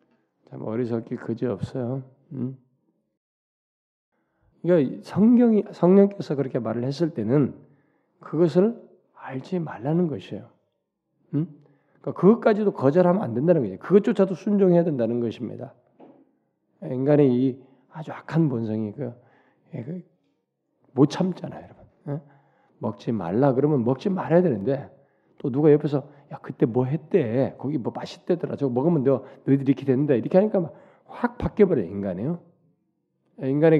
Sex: male